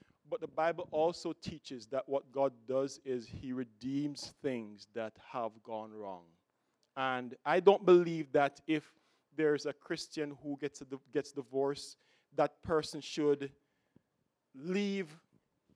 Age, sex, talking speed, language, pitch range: 40-59, male, 135 wpm, English, 135-165 Hz